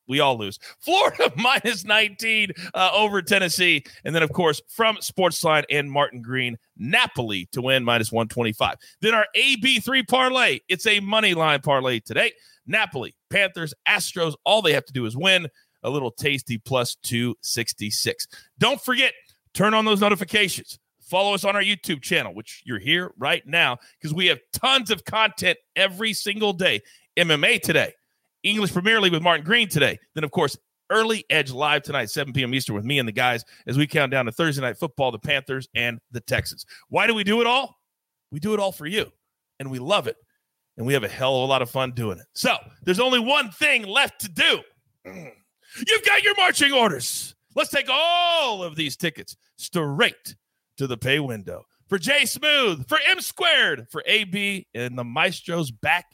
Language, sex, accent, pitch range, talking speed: English, male, American, 130-220 Hz, 185 wpm